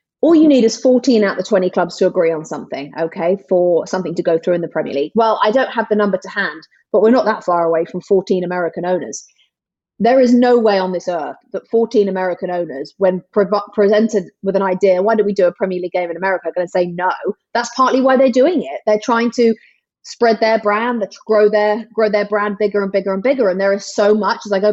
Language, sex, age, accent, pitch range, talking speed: English, female, 30-49, British, 185-240 Hz, 250 wpm